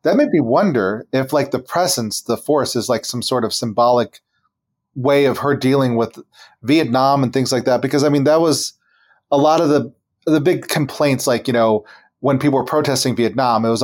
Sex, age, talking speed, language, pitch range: male, 30-49, 210 wpm, English, 115-145 Hz